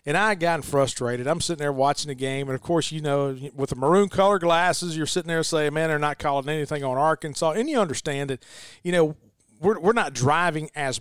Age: 40-59